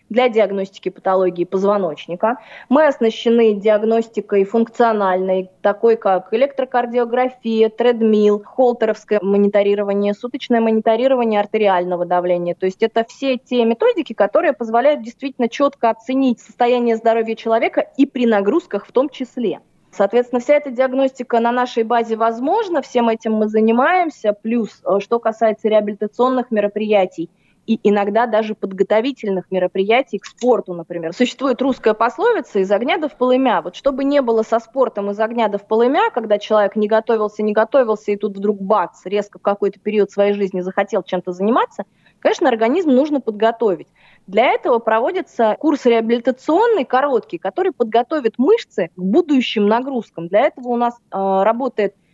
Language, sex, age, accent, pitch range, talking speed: Russian, female, 20-39, native, 205-250 Hz, 140 wpm